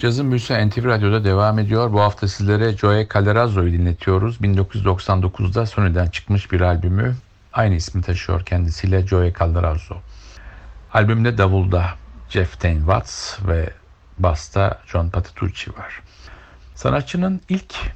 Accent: native